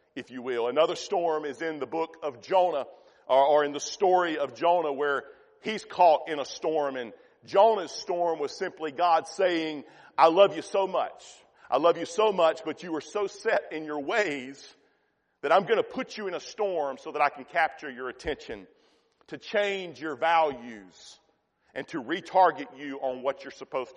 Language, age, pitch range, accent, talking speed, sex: English, 40-59, 155-200 Hz, American, 195 wpm, male